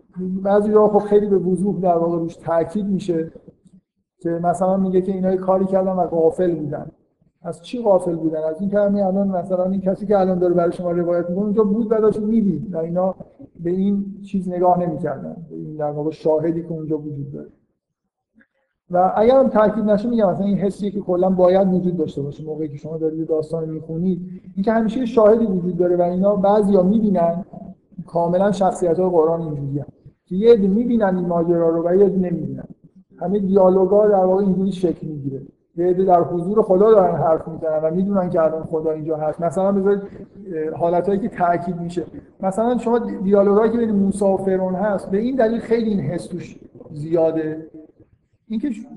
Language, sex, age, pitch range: Persian, male, 50-69, 170-205 Hz